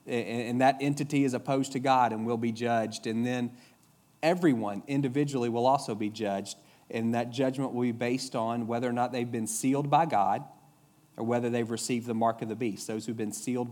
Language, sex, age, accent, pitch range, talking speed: English, male, 40-59, American, 115-145 Hz, 205 wpm